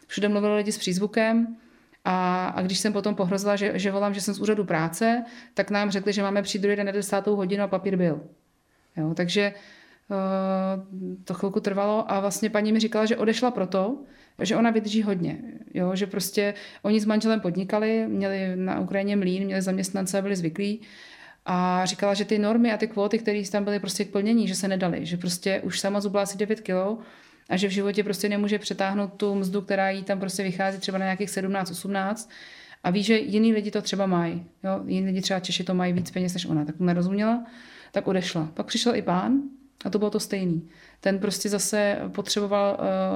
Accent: Czech